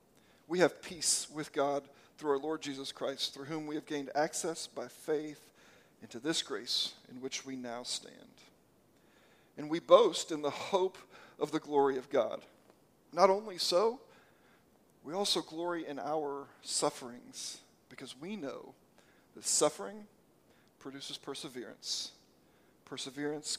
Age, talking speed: 50-69, 135 wpm